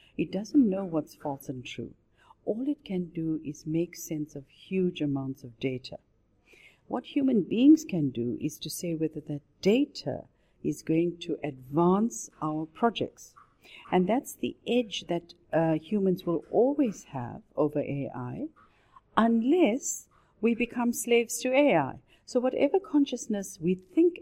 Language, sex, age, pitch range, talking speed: French, female, 50-69, 140-195 Hz, 145 wpm